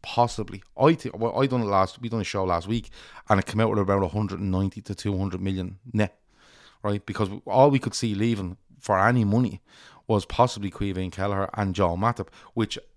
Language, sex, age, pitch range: English, male, 30-49, 95-115 Hz